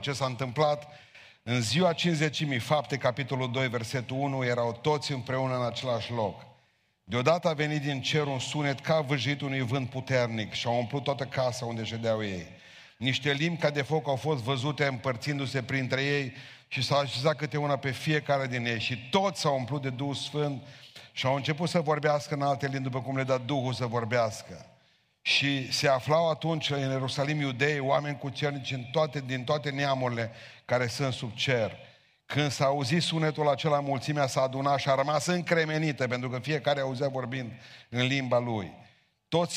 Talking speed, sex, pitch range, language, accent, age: 180 wpm, male, 125-145 Hz, Romanian, native, 40-59